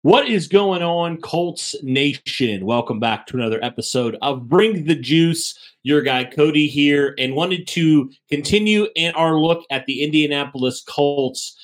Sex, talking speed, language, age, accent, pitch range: male, 155 wpm, English, 30-49, American, 130-165 Hz